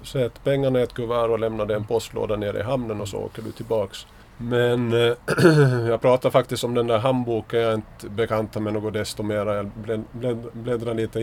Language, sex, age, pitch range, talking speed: Swedish, male, 30-49, 100-120 Hz, 205 wpm